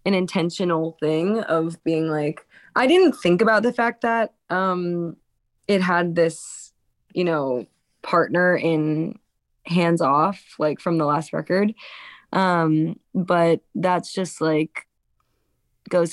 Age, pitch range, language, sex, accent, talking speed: 20-39, 160-180 Hz, English, female, American, 125 wpm